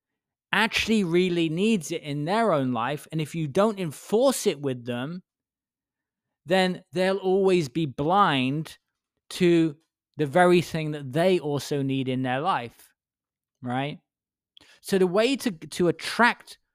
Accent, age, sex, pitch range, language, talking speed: British, 20-39, male, 140-175 Hz, English, 140 wpm